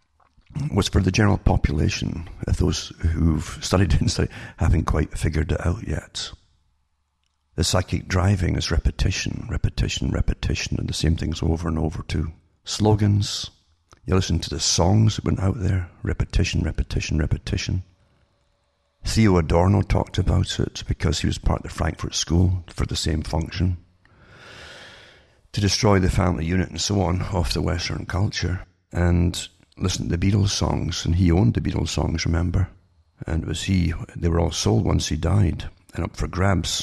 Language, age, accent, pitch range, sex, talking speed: English, 60-79, British, 80-100 Hz, male, 165 wpm